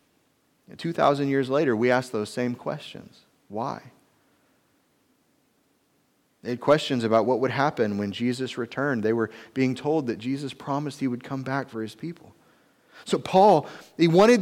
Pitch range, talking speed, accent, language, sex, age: 145-205 Hz, 155 wpm, American, English, male, 30-49